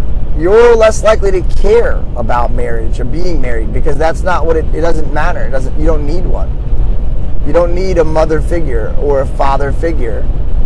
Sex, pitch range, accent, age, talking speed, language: male, 130-185 Hz, American, 20-39, 190 wpm, English